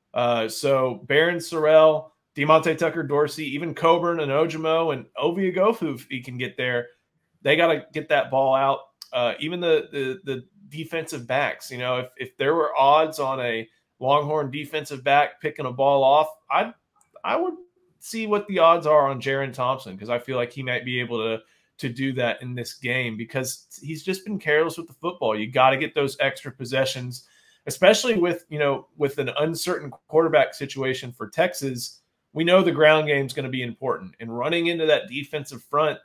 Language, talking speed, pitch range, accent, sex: English, 195 wpm, 130-160 Hz, American, male